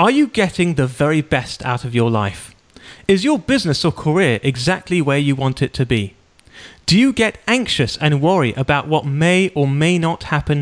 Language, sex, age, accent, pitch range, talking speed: English, male, 30-49, British, 130-200 Hz, 200 wpm